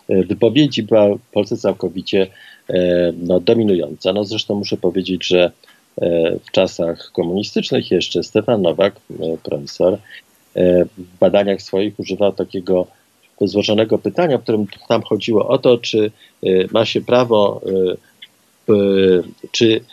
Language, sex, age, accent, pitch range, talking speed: Polish, male, 50-69, native, 90-115 Hz, 105 wpm